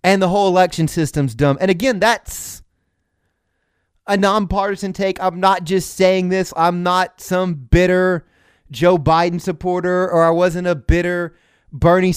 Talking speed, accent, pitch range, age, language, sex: 150 wpm, American, 130-180 Hz, 30-49, English, male